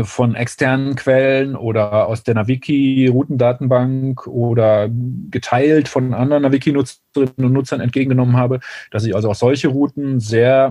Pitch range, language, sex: 120-140 Hz, German, male